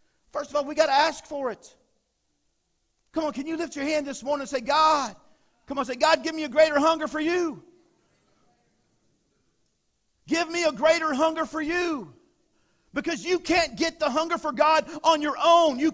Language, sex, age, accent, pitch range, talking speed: English, male, 40-59, American, 250-315 Hz, 190 wpm